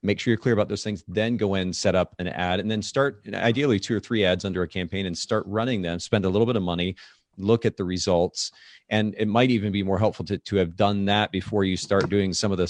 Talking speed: 275 wpm